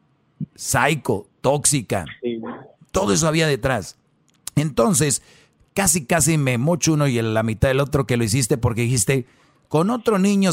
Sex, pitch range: male, 125-160 Hz